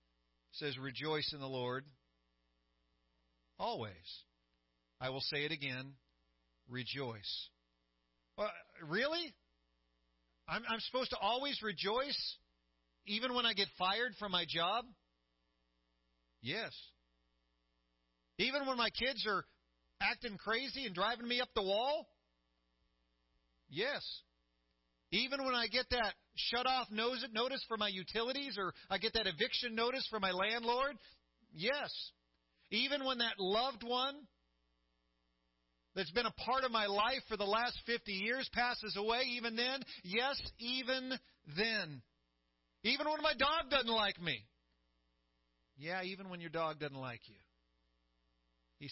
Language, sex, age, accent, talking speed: English, male, 40-59, American, 125 wpm